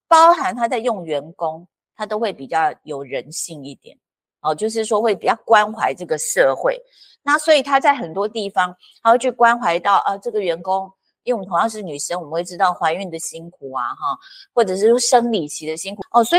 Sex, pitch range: female, 170-265 Hz